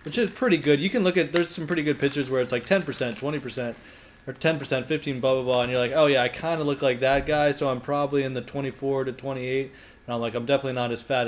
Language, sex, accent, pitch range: English, male, American, 125-145 Hz